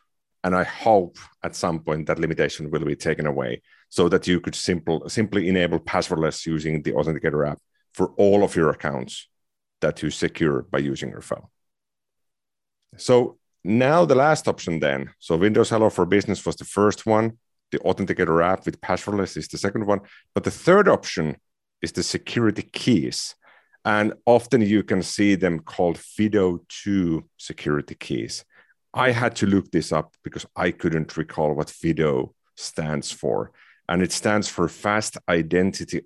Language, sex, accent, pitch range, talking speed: English, male, Finnish, 80-105 Hz, 160 wpm